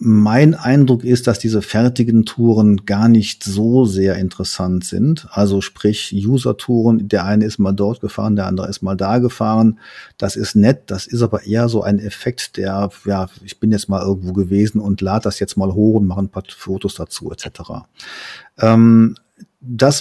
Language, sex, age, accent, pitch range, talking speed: German, male, 40-59, German, 100-120 Hz, 180 wpm